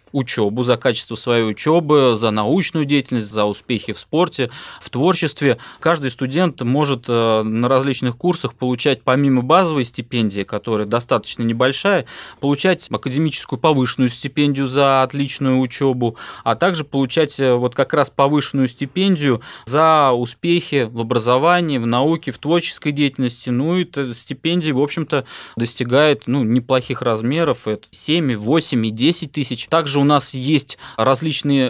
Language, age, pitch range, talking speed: Russian, 20-39, 120-150 Hz, 135 wpm